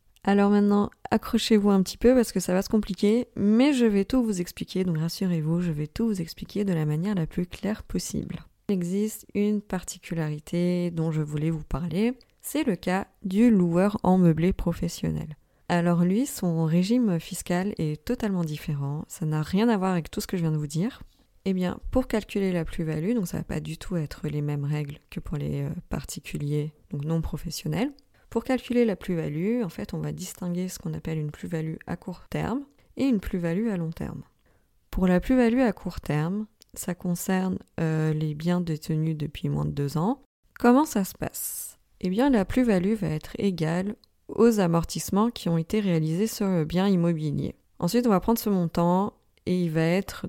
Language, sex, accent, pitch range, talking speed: French, female, French, 160-210 Hz, 200 wpm